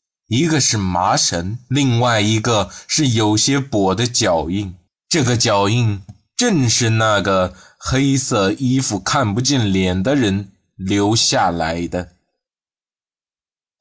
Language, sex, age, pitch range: Chinese, male, 20-39, 95-130 Hz